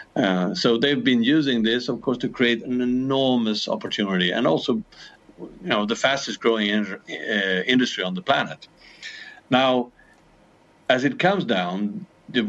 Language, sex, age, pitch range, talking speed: English, male, 50-69, 100-120 Hz, 155 wpm